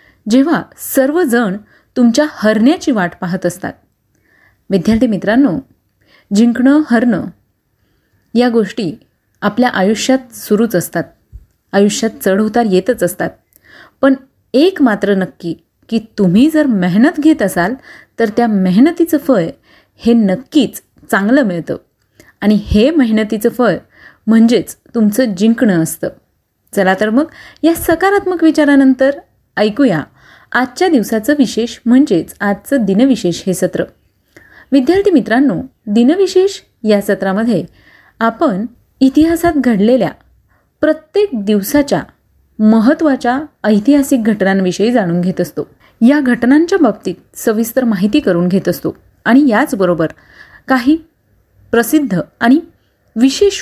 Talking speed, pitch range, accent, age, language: 105 wpm, 205-280 Hz, native, 30-49, Marathi